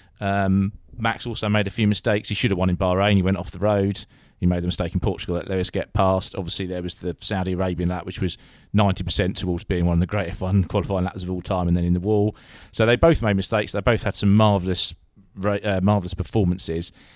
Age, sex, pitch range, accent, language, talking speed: 30-49, male, 90-105 Hz, British, English, 235 wpm